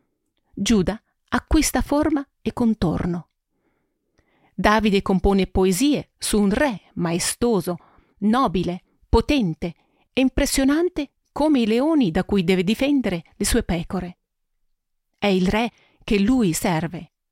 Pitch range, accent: 180-240 Hz, native